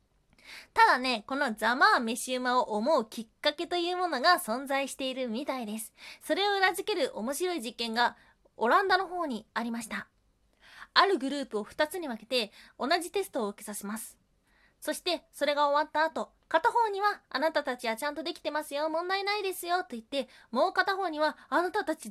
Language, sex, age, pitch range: Japanese, female, 20-39, 240-345 Hz